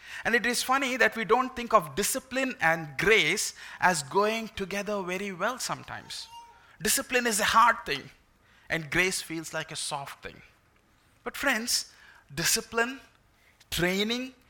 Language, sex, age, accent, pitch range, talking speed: English, male, 20-39, Indian, 175-240 Hz, 140 wpm